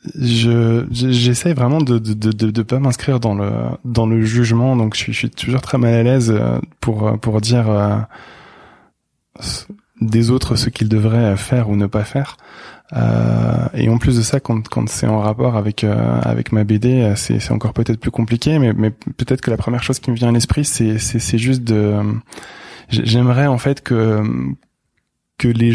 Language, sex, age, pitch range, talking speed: French, male, 20-39, 105-125 Hz, 190 wpm